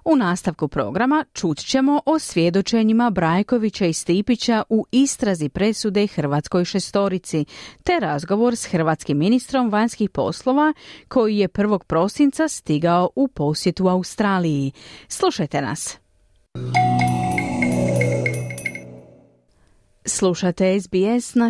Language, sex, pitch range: Croatian, female, 160-235 Hz